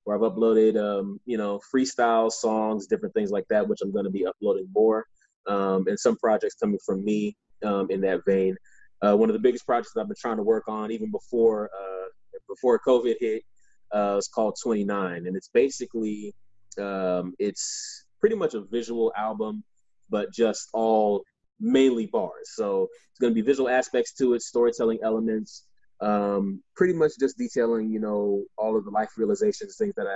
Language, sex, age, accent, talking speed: English, male, 20-39, American, 180 wpm